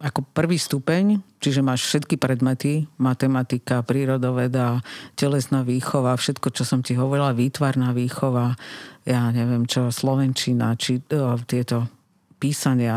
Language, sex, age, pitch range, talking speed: Slovak, female, 50-69, 125-140 Hz, 120 wpm